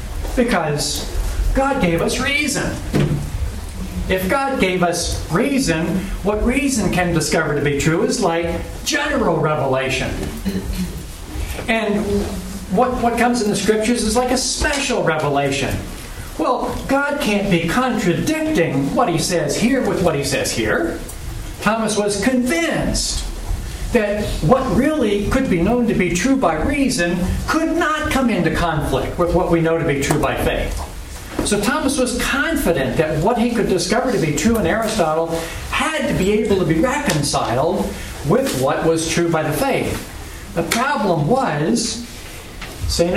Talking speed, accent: 150 wpm, American